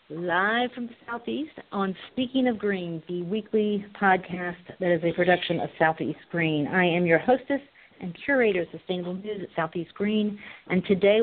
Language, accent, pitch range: English, American, 160-205 Hz